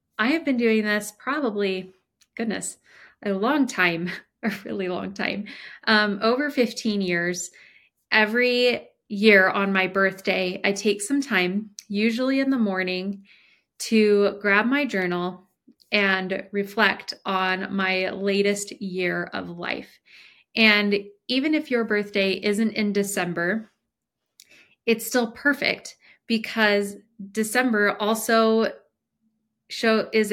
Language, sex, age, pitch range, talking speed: English, female, 20-39, 190-225 Hz, 115 wpm